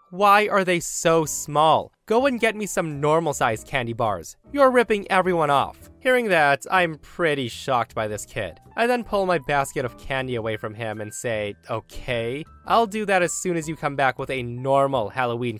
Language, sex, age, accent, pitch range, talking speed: English, male, 20-39, American, 120-175 Hz, 195 wpm